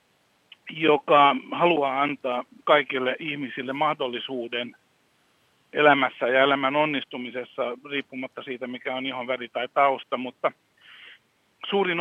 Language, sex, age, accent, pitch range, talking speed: Finnish, male, 60-79, native, 140-195 Hz, 95 wpm